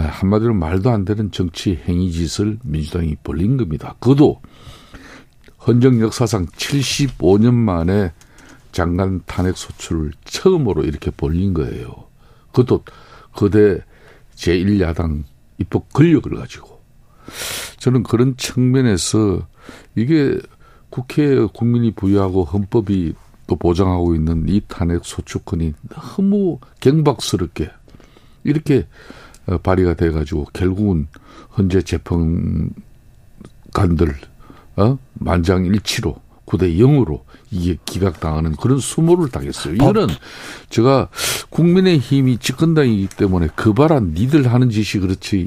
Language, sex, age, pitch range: Korean, male, 50-69, 85-125 Hz